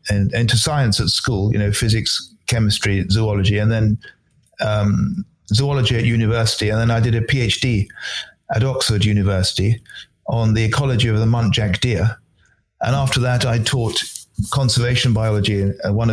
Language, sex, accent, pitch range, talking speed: English, male, British, 105-135 Hz, 155 wpm